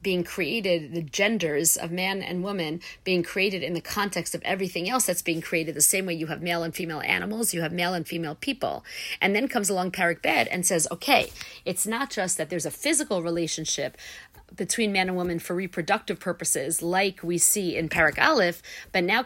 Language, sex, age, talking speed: English, female, 50-69, 205 wpm